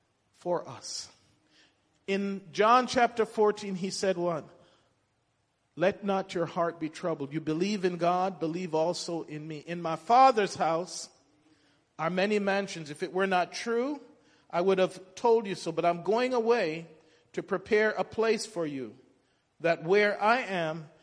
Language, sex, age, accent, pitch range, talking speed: English, male, 40-59, American, 165-210 Hz, 155 wpm